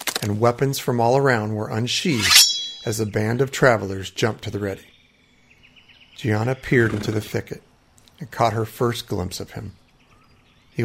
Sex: male